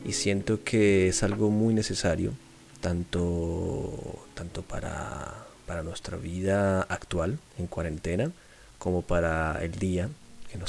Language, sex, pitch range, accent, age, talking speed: Spanish, male, 85-105 Hz, Argentinian, 30-49, 125 wpm